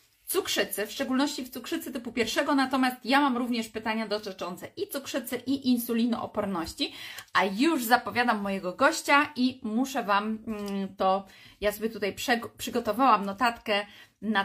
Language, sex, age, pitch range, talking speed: Polish, female, 30-49, 215-255 Hz, 135 wpm